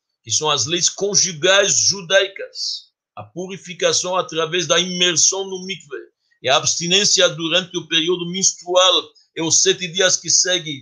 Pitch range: 155-210 Hz